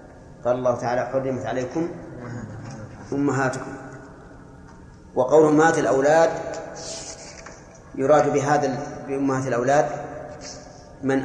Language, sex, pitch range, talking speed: Arabic, male, 125-150 Hz, 75 wpm